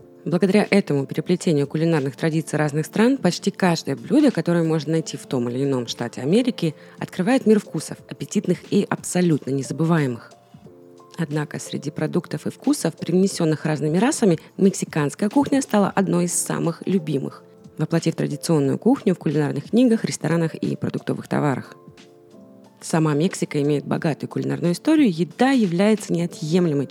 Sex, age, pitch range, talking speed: female, 20-39, 150-195 Hz, 135 wpm